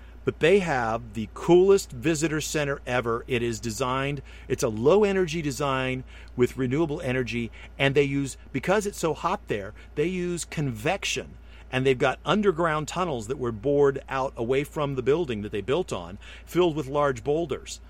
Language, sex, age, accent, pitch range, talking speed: English, male, 50-69, American, 115-150 Hz, 170 wpm